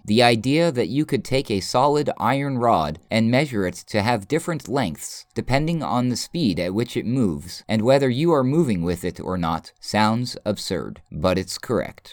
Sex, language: male, English